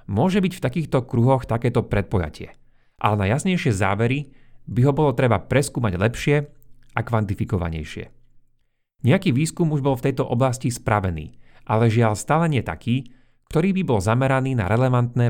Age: 30-49